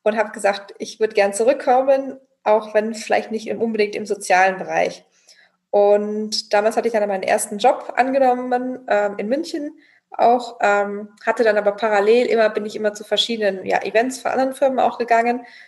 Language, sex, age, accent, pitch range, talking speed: German, female, 20-39, German, 205-245 Hz, 175 wpm